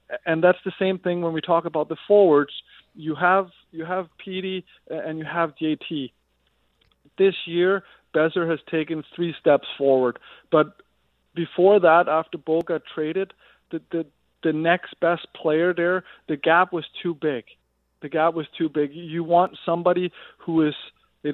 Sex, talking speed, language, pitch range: male, 165 wpm, English, 155-180 Hz